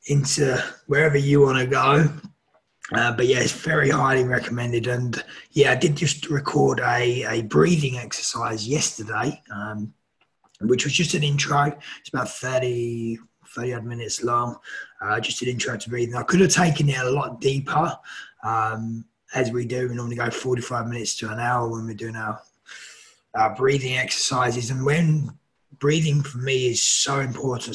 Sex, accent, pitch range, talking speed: male, British, 115-140 Hz, 170 wpm